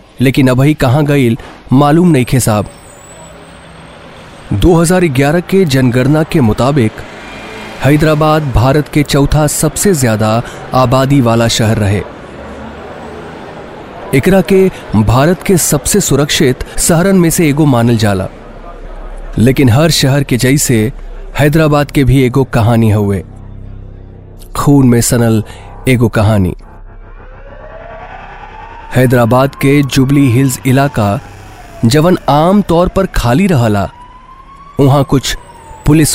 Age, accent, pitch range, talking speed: 30-49, native, 110-150 Hz, 110 wpm